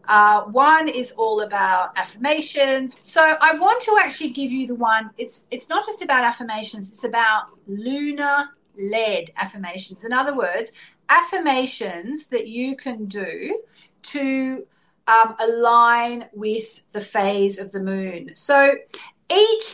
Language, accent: English, Australian